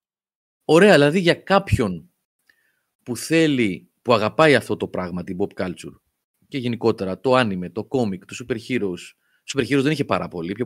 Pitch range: 100-135 Hz